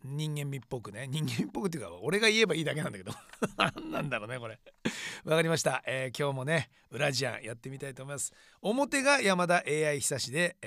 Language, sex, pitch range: Japanese, male, 130-185 Hz